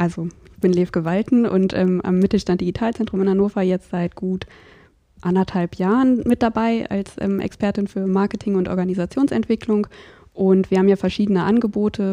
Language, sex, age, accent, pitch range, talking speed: German, female, 20-39, German, 180-205 Hz, 160 wpm